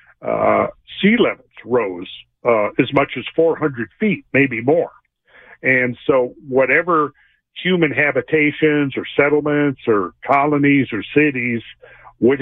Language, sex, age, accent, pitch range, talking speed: English, male, 50-69, American, 120-150 Hz, 115 wpm